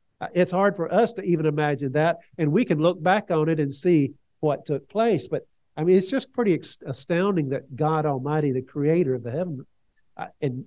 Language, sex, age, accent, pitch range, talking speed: English, male, 50-69, American, 135-170 Hz, 200 wpm